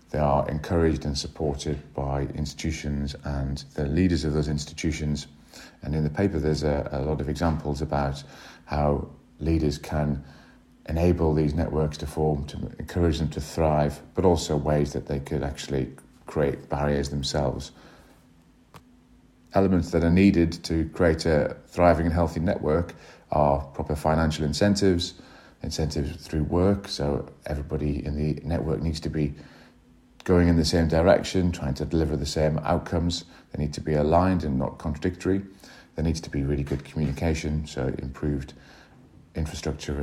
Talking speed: 155 wpm